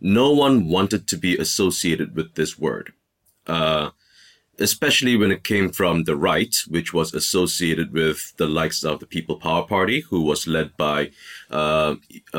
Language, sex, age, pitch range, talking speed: English, male, 30-49, 80-95 Hz, 160 wpm